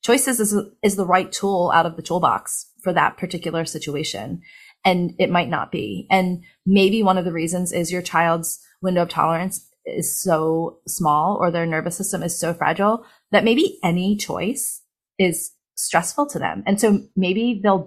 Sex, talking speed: female, 180 wpm